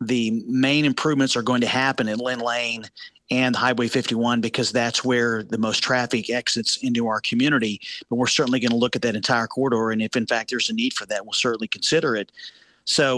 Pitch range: 120-130 Hz